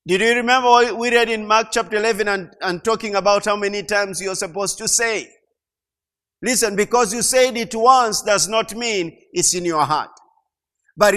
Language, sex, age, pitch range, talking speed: English, male, 50-69, 155-225 Hz, 190 wpm